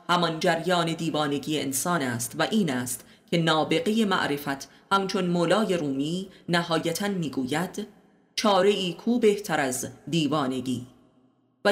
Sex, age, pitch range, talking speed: female, 30-49, 155-200 Hz, 125 wpm